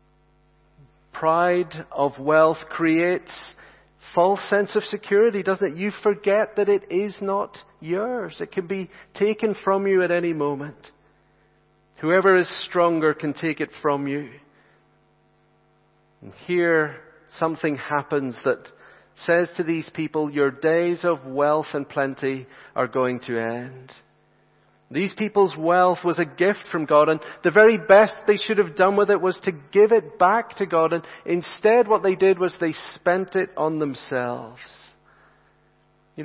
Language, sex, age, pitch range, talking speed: English, male, 40-59, 150-195 Hz, 150 wpm